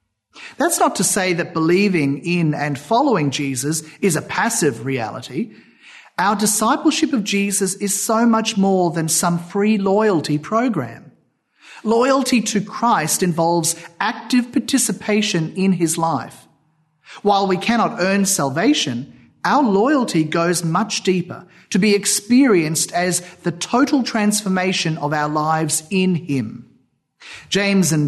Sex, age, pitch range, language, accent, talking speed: male, 40-59, 160-215 Hz, English, Australian, 130 wpm